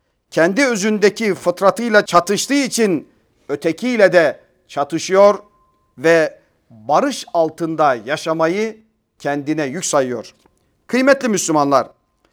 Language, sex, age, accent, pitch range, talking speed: Turkish, male, 40-59, native, 170-235 Hz, 85 wpm